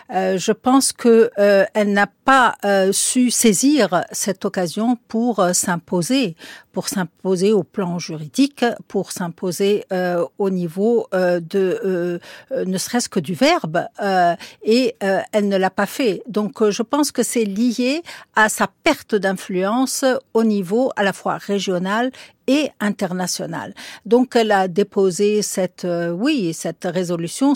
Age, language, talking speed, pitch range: 60-79, French, 155 wpm, 180-230 Hz